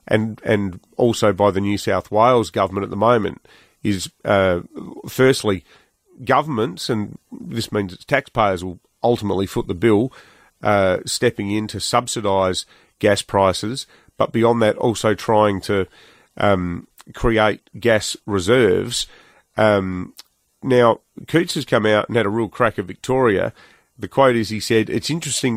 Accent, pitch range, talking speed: Australian, 100-120 Hz, 150 wpm